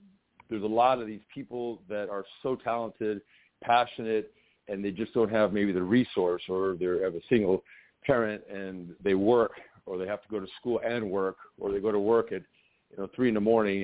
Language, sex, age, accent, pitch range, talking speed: English, male, 50-69, American, 100-120 Hz, 210 wpm